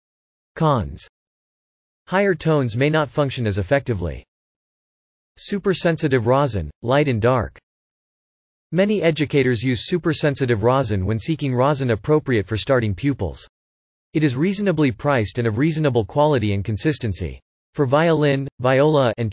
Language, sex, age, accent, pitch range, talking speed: English, male, 40-59, American, 110-150 Hz, 125 wpm